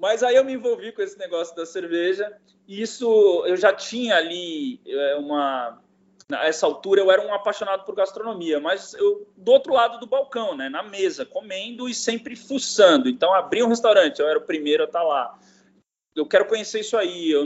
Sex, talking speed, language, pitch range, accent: male, 195 wpm, Portuguese, 180-260 Hz, Brazilian